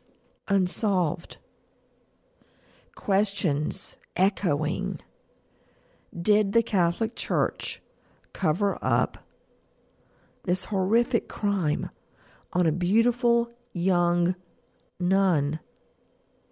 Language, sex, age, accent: English, female, 50-69, American